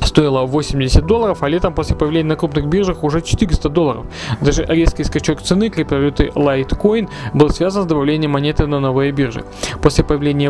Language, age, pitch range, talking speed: Russian, 20-39, 140-165 Hz, 165 wpm